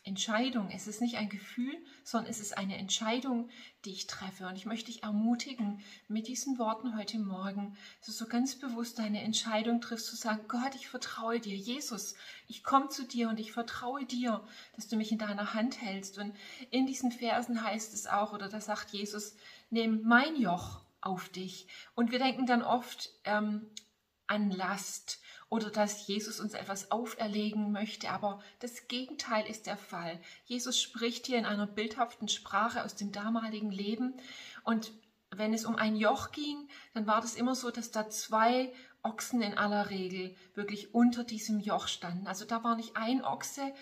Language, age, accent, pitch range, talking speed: German, 30-49, German, 205-240 Hz, 180 wpm